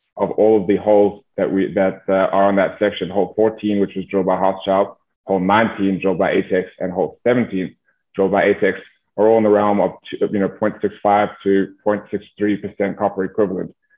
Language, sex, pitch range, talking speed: English, male, 95-105 Hz, 195 wpm